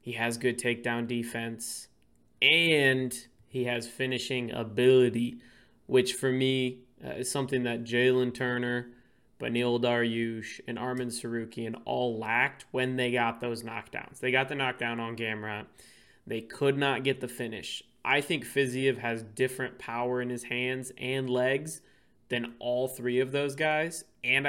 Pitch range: 120-135 Hz